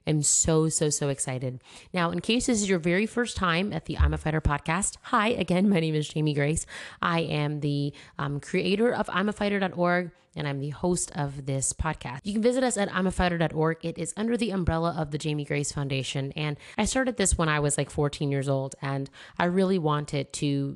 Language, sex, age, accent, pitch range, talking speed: English, female, 30-49, American, 135-165 Hz, 215 wpm